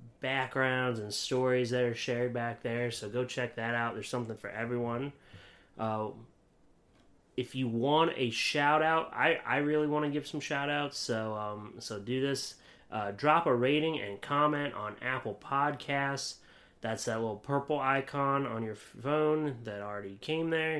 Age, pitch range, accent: 30-49, 115-145 Hz, American